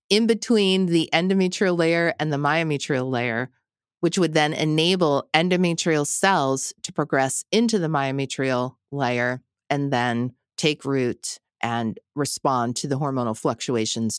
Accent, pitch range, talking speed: American, 135-170 Hz, 130 wpm